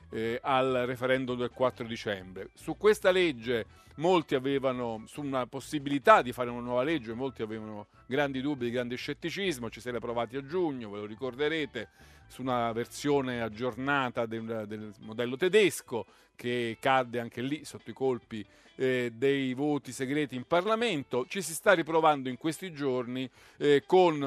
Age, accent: 50-69, native